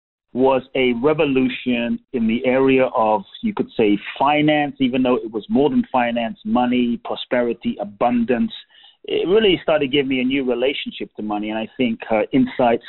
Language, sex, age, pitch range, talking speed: English, male, 30-49, 110-135 Hz, 170 wpm